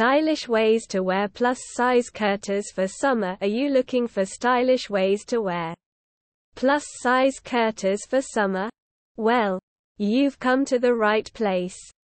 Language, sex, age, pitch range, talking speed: English, female, 20-39, 195-245 Hz, 145 wpm